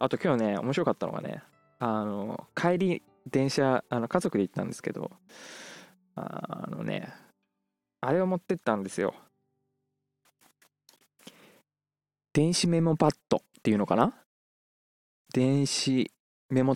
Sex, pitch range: male, 110-140 Hz